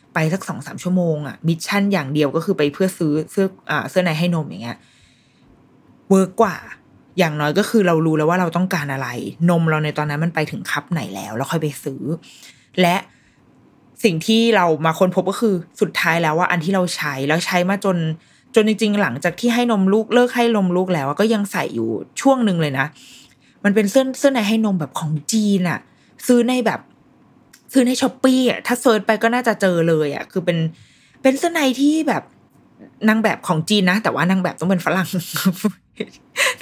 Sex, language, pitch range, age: female, Thai, 155-215 Hz, 20-39